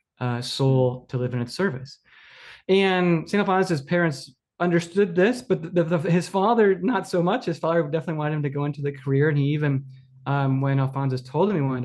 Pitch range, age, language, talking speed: 135-170 Hz, 20-39, English, 215 wpm